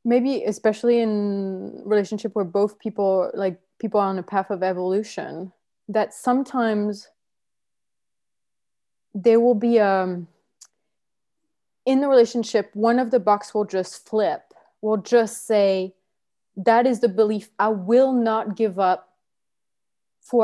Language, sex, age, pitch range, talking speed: English, female, 20-39, 205-245 Hz, 125 wpm